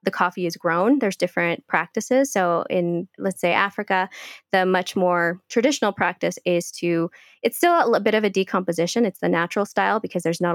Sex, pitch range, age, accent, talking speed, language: female, 175-205 Hz, 20-39, American, 180 wpm, English